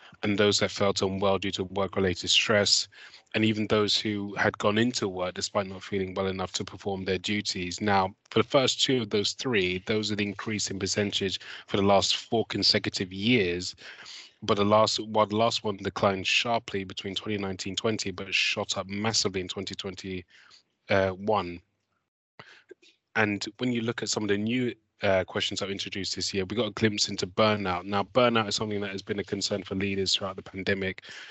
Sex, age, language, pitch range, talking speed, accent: male, 20-39, English, 95-105 Hz, 190 wpm, British